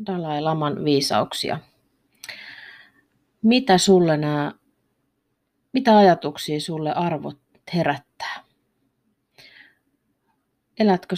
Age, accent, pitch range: 30-49, native, 145-185 Hz